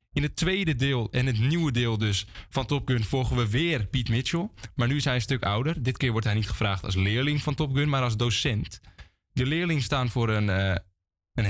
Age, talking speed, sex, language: 20-39, 230 wpm, male, Dutch